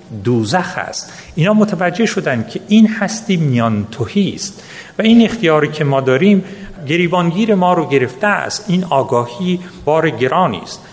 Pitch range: 140-200 Hz